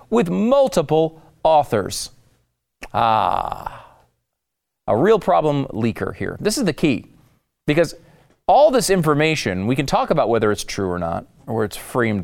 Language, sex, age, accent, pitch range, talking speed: English, male, 40-59, American, 105-165 Hz, 145 wpm